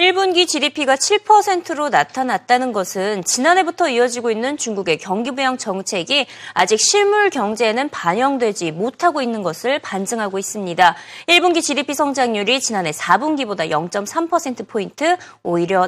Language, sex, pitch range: Korean, female, 220-340 Hz